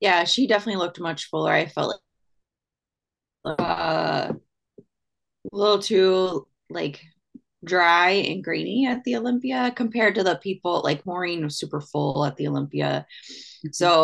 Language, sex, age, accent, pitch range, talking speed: English, female, 20-39, American, 150-195 Hz, 140 wpm